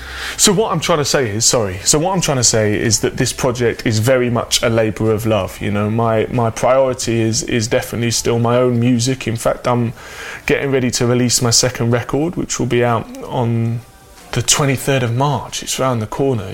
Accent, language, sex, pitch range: British, English, male, 115-140 Hz